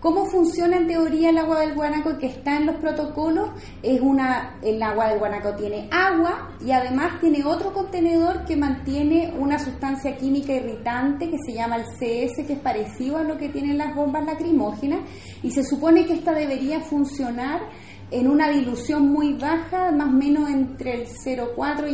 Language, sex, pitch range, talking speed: Spanish, female, 240-310 Hz, 180 wpm